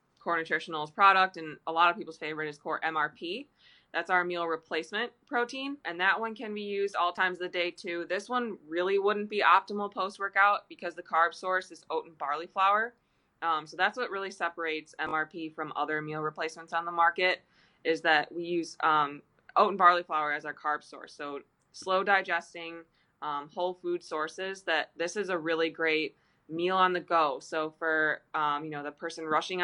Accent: American